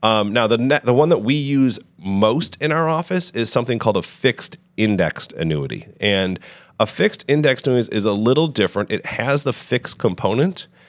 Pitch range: 95-130 Hz